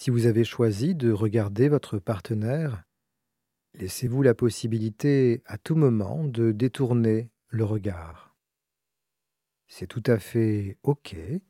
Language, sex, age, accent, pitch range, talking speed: French, male, 40-59, French, 105-130 Hz, 120 wpm